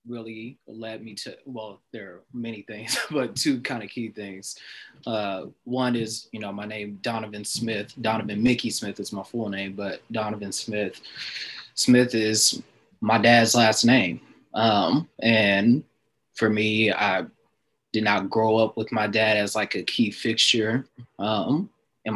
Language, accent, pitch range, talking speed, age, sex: English, American, 105-120 Hz, 160 wpm, 20-39, male